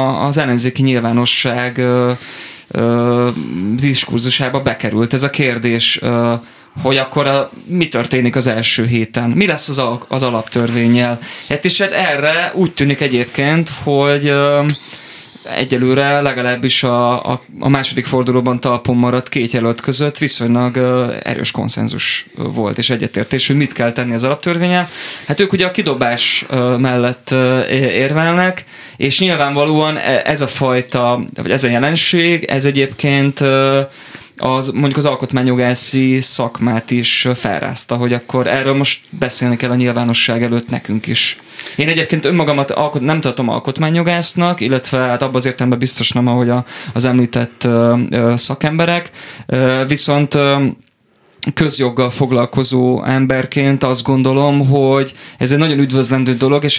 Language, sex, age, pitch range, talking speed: Hungarian, male, 20-39, 120-140 Hz, 135 wpm